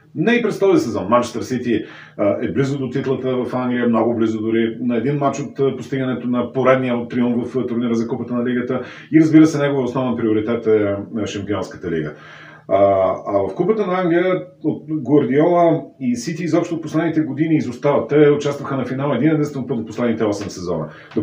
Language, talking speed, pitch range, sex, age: Bulgarian, 190 wpm, 115-155 Hz, male, 40-59